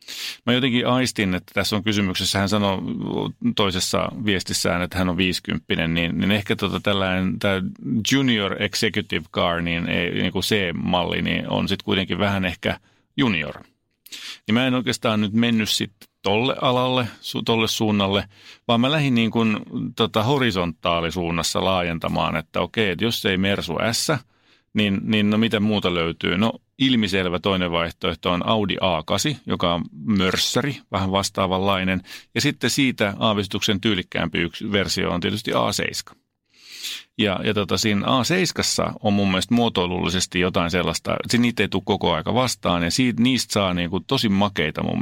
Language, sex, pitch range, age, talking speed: Finnish, male, 95-115 Hz, 30-49, 150 wpm